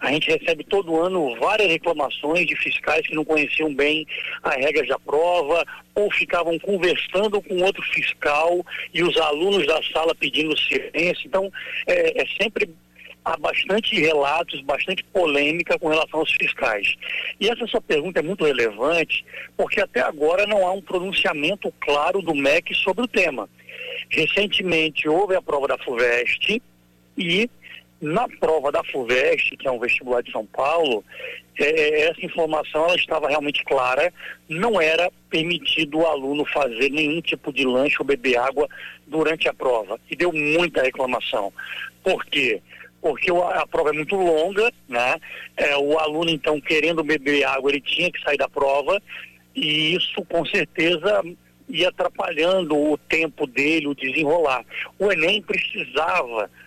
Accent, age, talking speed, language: Brazilian, 60-79, 150 wpm, Portuguese